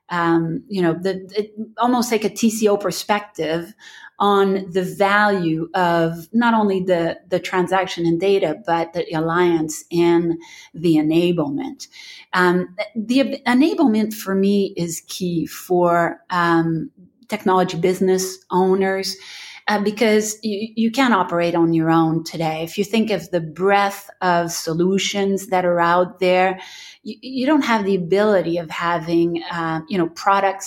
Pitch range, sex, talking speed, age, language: 170-210 Hz, female, 145 wpm, 30-49, English